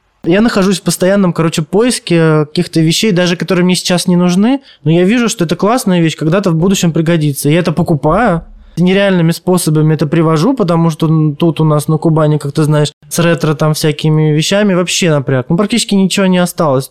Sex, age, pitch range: male, 20-39, 145-175 Hz